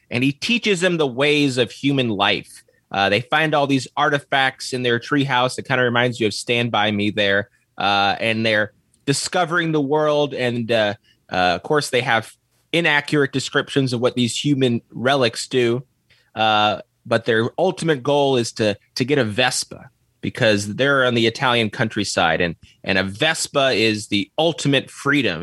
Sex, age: male, 20-39